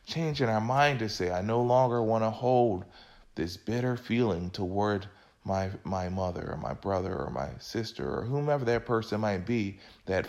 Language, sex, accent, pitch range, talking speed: English, male, American, 95-125 Hz, 180 wpm